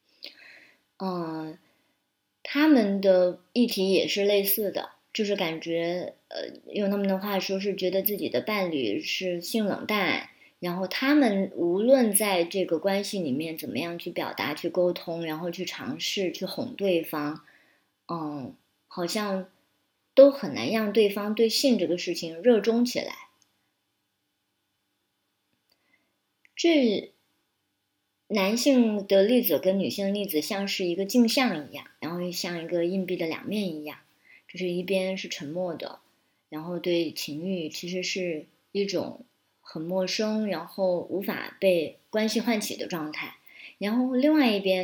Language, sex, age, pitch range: Chinese, male, 30-49, 175-210 Hz